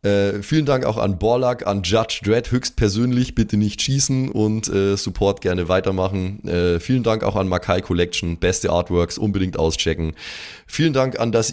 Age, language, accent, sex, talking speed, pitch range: 20-39, German, German, male, 170 wpm, 90-125 Hz